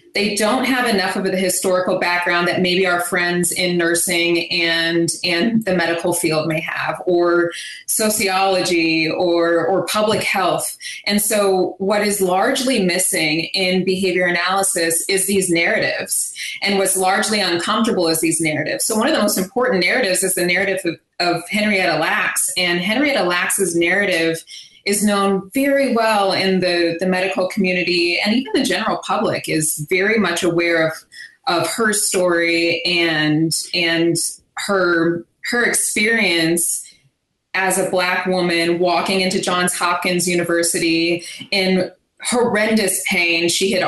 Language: English